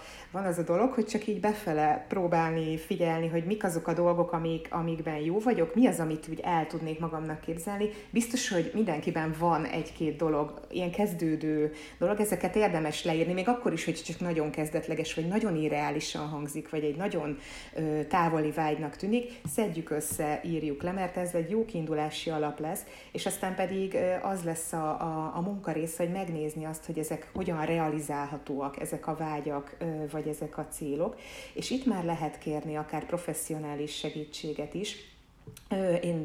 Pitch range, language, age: 155-170 Hz, Hungarian, 30-49